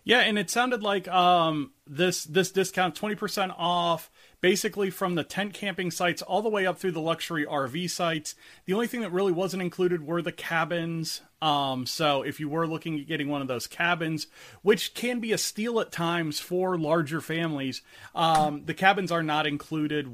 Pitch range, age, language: 145-190 Hz, 30-49, English